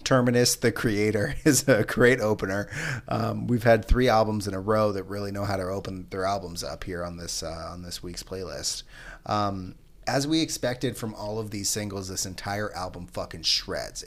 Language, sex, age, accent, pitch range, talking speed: English, male, 30-49, American, 100-125 Hz, 195 wpm